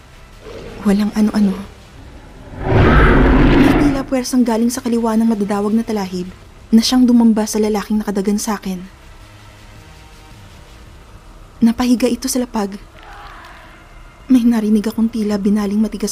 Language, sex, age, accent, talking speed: Filipino, female, 20-39, native, 110 wpm